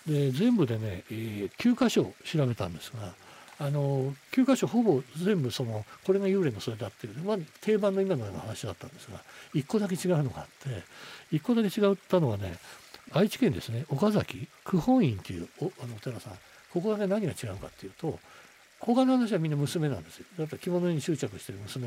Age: 60-79